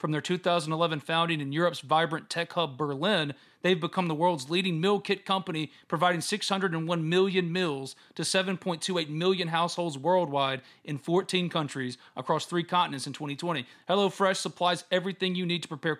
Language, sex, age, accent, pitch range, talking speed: English, male, 40-59, American, 160-195 Hz, 160 wpm